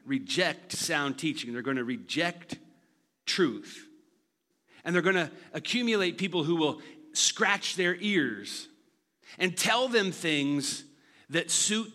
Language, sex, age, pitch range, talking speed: English, male, 40-59, 130-185 Hz, 125 wpm